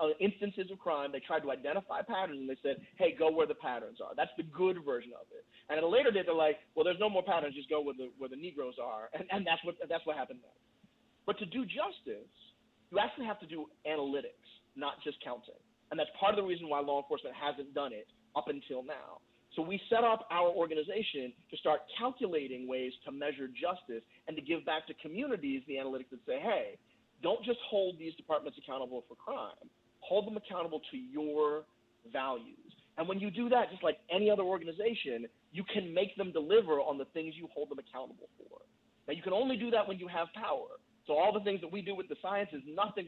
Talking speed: 225 wpm